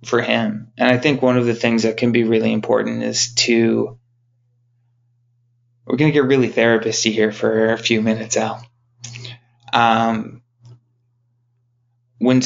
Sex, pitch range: male, 115-120 Hz